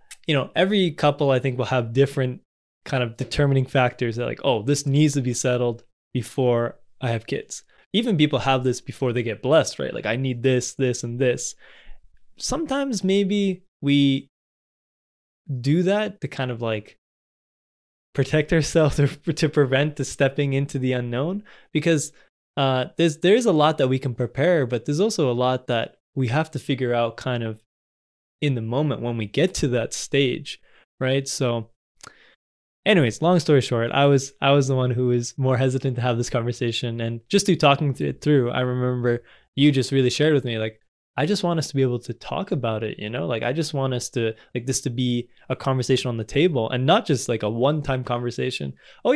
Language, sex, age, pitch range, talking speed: English, male, 20-39, 125-155 Hz, 205 wpm